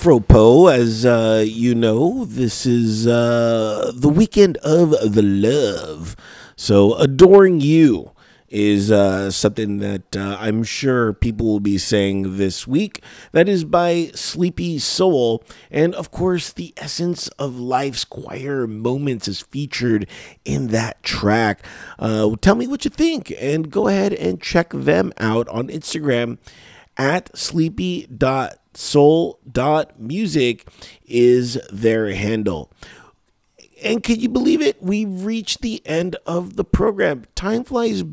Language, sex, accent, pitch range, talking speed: English, male, American, 110-180 Hz, 130 wpm